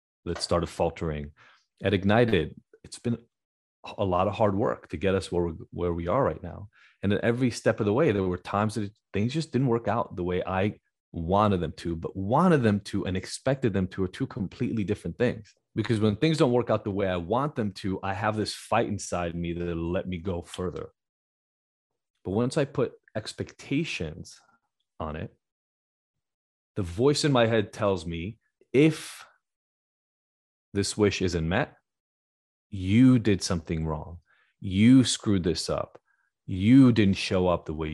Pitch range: 85-115 Hz